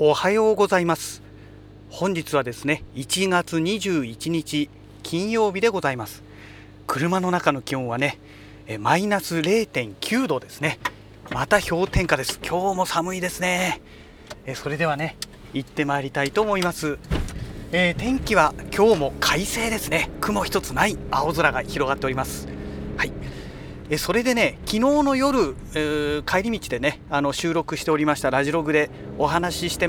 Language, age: Japanese, 40-59